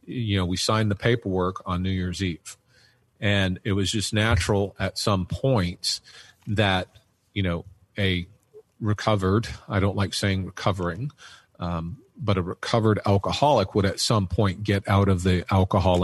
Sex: male